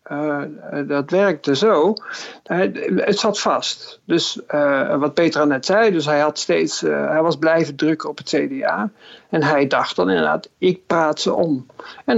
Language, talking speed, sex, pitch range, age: Dutch, 175 wpm, male, 150-195 Hz, 50-69